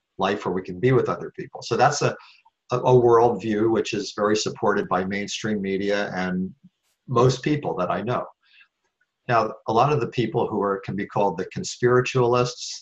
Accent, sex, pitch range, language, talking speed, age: American, male, 95-125 Hz, English, 185 wpm, 50-69